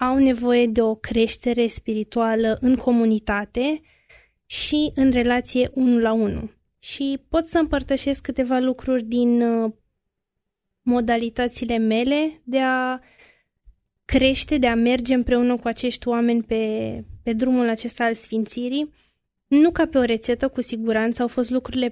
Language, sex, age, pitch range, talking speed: Romanian, female, 20-39, 225-265 Hz, 135 wpm